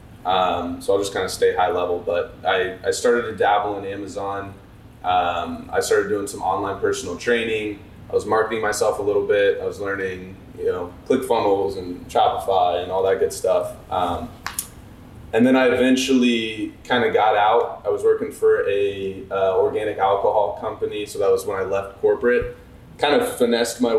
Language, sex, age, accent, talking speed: English, male, 20-39, American, 190 wpm